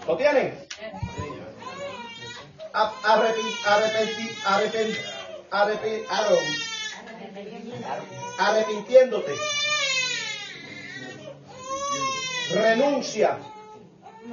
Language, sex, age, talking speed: Spanish, male, 30-49, 40 wpm